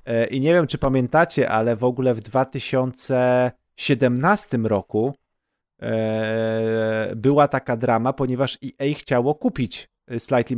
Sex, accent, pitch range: male, native, 115-130 Hz